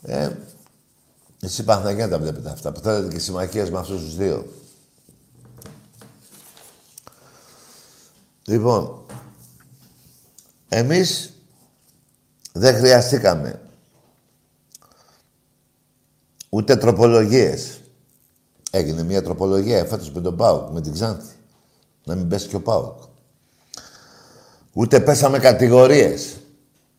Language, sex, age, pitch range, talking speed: Greek, male, 60-79, 90-130 Hz, 90 wpm